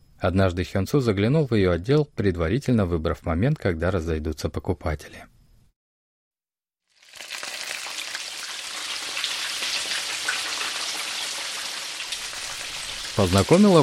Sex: male